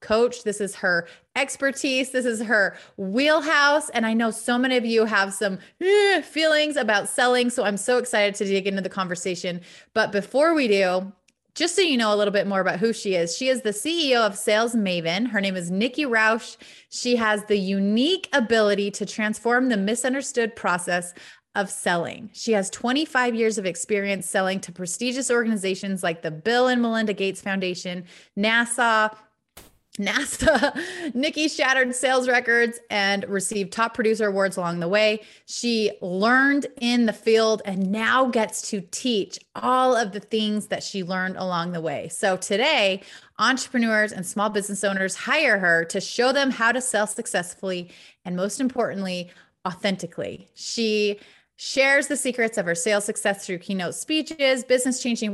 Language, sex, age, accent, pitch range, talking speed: English, female, 30-49, American, 195-250 Hz, 170 wpm